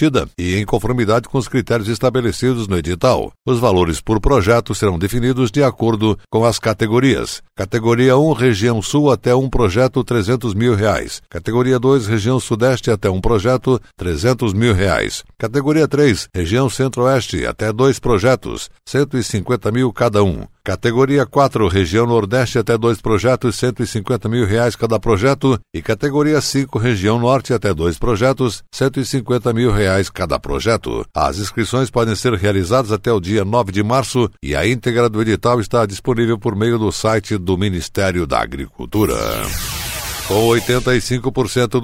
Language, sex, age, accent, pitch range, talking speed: Portuguese, male, 60-79, Brazilian, 110-125 Hz, 150 wpm